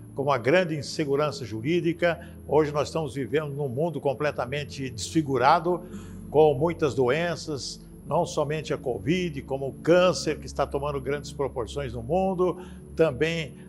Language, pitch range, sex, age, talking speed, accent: Portuguese, 140-195 Hz, male, 60-79, 135 wpm, Brazilian